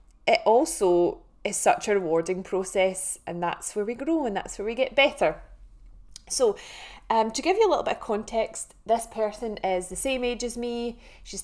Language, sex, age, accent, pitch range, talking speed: English, female, 20-39, British, 195-235 Hz, 195 wpm